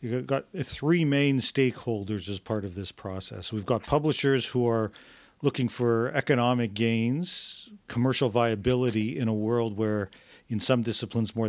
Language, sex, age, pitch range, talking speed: English, male, 40-59, 110-130 Hz, 150 wpm